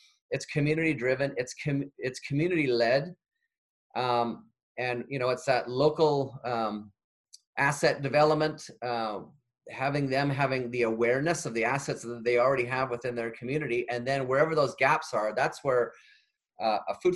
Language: English